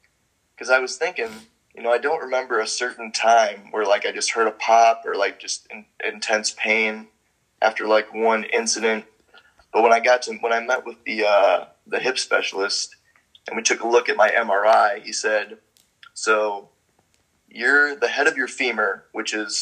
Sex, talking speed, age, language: male, 190 wpm, 20-39, English